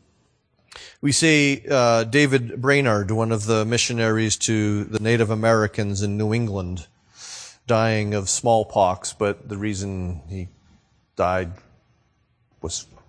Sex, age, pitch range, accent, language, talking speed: male, 40-59, 95-115 Hz, American, English, 115 wpm